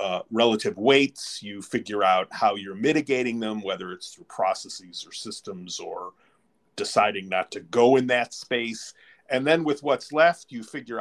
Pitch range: 100-130 Hz